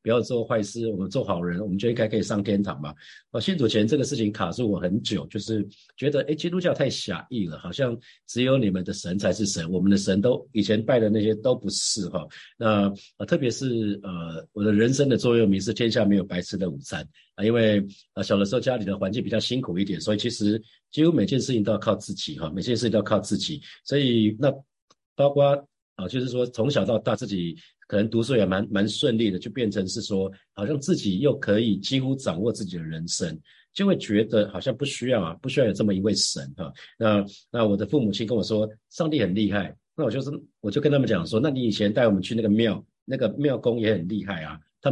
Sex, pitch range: male, 100-125 Hz